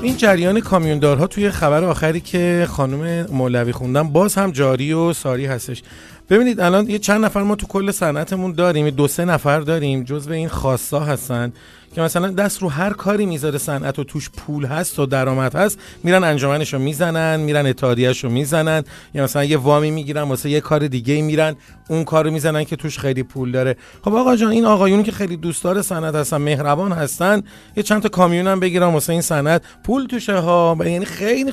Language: Persian